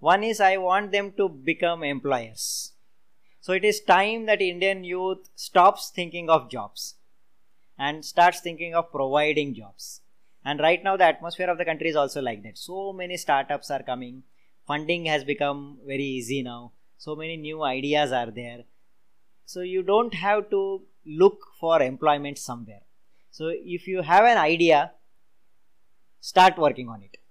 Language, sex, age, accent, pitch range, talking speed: English, male, 20-39, Indian, 145-175 Hz, 160 wpm